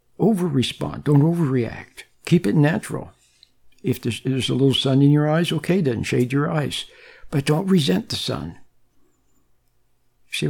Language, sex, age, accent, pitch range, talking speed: English, male, 60-79, American, 125-160 Hz, 160 wpm